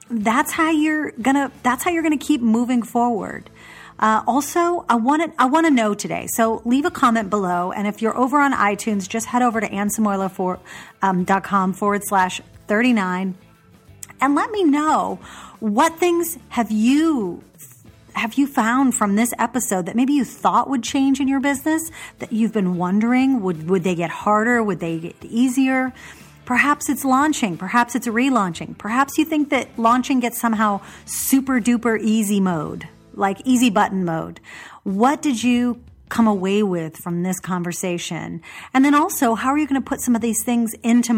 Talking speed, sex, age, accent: 180 wpm, female, 40-59, American